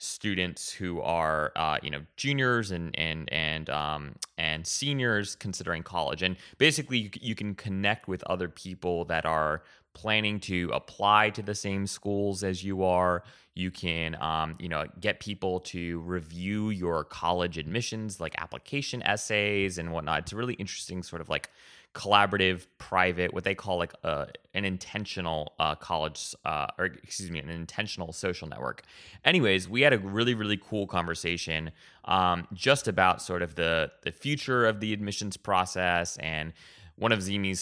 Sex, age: male, 20-39